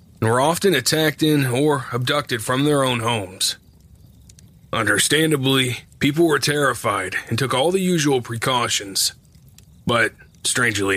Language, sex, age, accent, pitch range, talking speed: English, male, 30-49, American, 120-150 Hz, 125 wpm